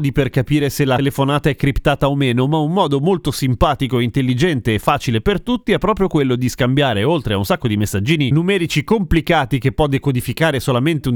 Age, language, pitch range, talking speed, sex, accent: 30-49, Italian, 125-170 Hz, 200 wpm, male, native